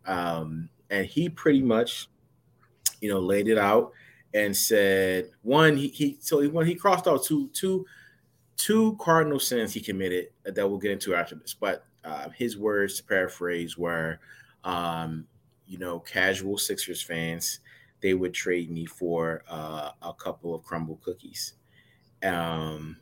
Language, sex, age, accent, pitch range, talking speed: English, male, 30-49, American, 85-105 Hz, 155 wpm